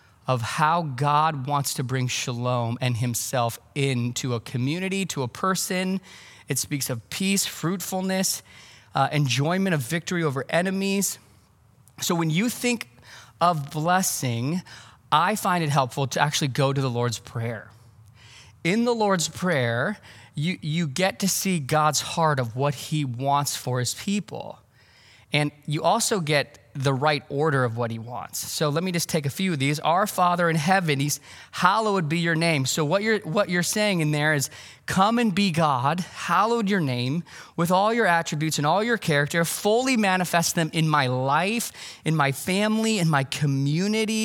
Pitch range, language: 135-185 Hz, English